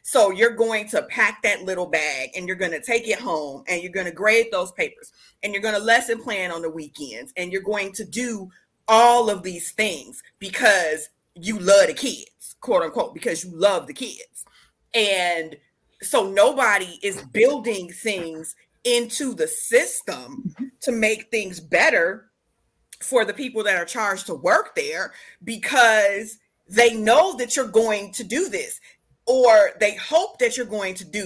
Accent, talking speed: American, 175 wpm